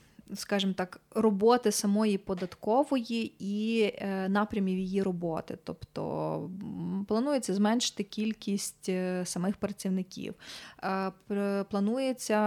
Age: 20-39